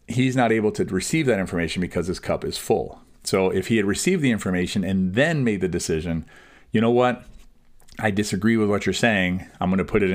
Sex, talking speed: male, 225 wpm